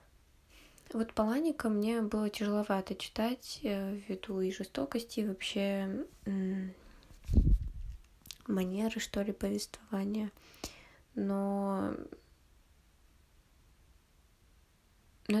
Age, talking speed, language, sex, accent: 20-39, 65 wpm, Russian, female, native